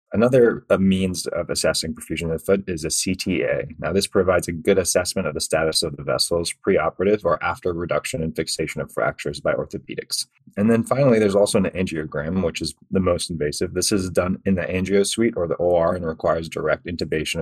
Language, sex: English, male